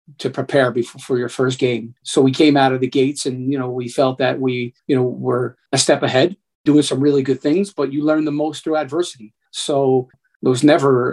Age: 40-59